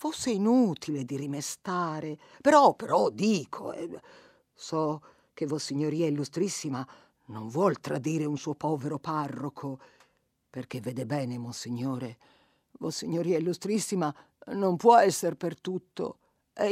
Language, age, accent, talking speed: Italian, 50-69, native, 120 wpm